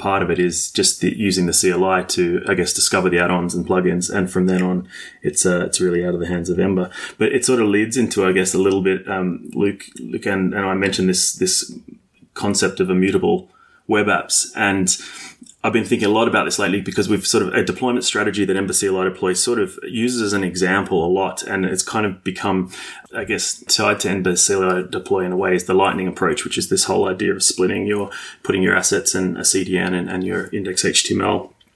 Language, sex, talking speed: English, male, 230 wpm